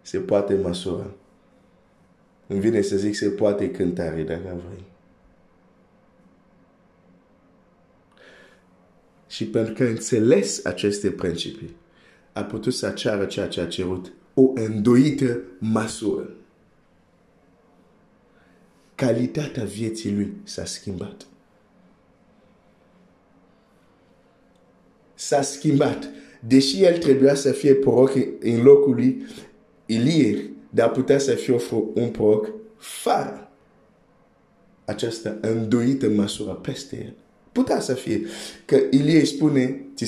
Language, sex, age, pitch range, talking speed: Romanian, male, 50-69, 100-135 Hz, 100 wpm